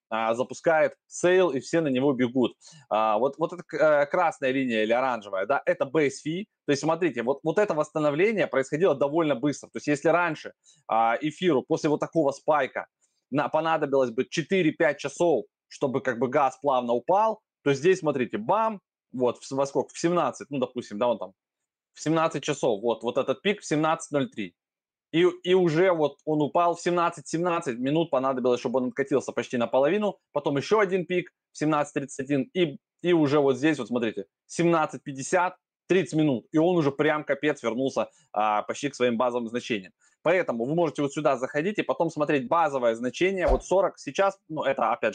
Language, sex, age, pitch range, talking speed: Russian, male, 20-39, 130-170 Hz, 175 wpm